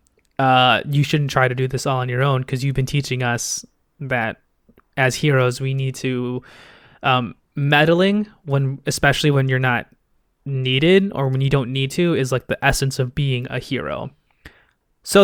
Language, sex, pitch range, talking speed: English, male, 125-145 Hz, 175 wpm